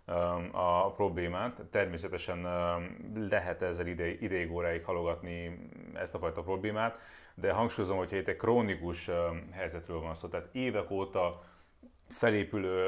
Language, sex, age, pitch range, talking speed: Hungarian, male, 30-49, 85-110 Hz, 115 wpm